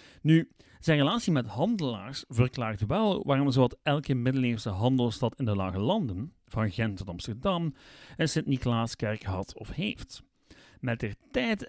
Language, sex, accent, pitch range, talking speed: Dutch, male, Dutch, 110-145 Hz, 145 wpm